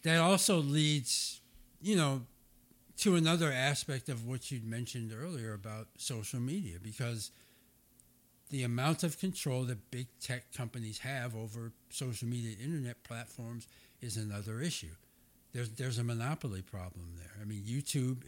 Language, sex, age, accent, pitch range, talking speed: English, male, 60-79, American, 110-130 Hz, 140 wpm